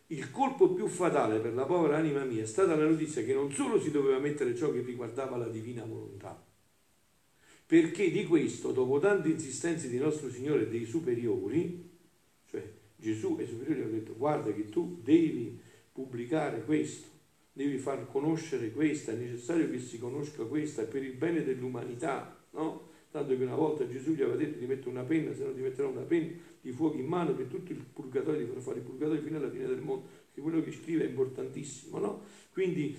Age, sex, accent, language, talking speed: 50-69, male, native, Italian, 195 wpm